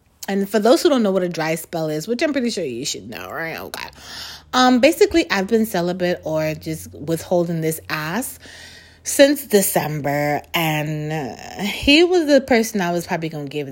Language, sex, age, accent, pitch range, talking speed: English, female, 30-49, American, 170-280 Hz, 195 wpm